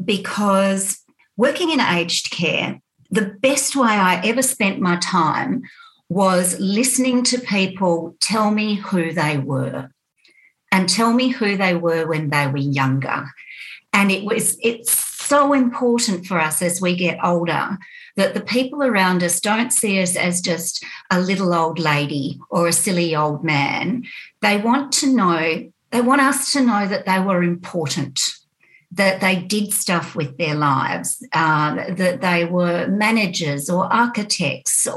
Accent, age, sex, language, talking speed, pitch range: Australian, 50-69, female, English, 155 wpm, 170-230 Hz